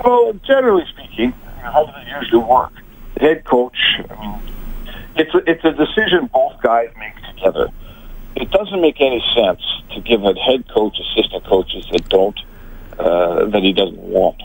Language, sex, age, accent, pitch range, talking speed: English, male, 50-69, American, 110-160 Hz, 165 wpm